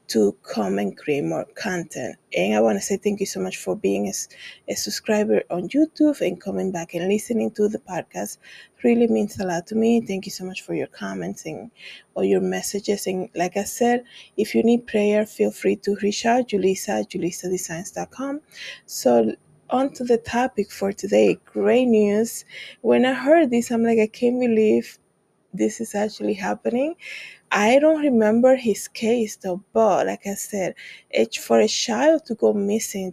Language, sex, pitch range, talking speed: English, female, 185-235 Hz, 185 wpm